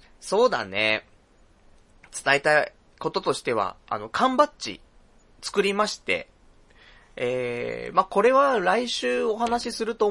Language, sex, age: Japanese, male, 20-39